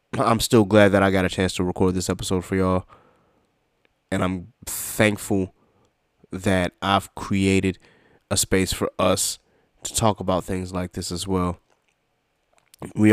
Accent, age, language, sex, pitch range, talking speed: American, 20-39, English, male, 90-100 Hz, 150 wpm